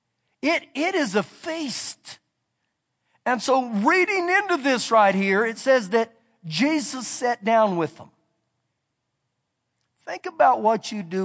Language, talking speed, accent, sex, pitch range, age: English, 135 wpm, American, male, 205-300 Hz, 50-69